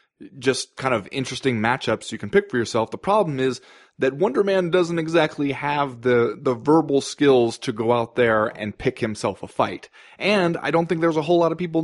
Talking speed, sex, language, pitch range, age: 215 wpm, male, English, 115-155 Hz, 30-49